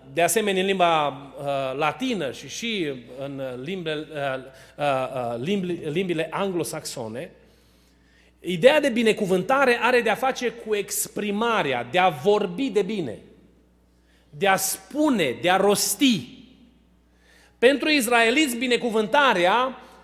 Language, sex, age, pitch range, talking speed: Romanian, male, 30-49, 180-250 Hz, 110 wpm